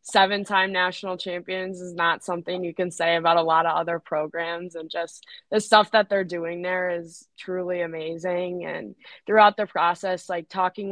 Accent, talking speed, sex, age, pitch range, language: American, 175 wpm, female, 20-39, 170-190 Hz, English